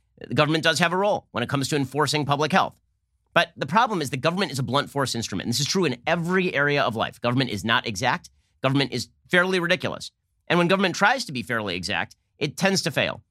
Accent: American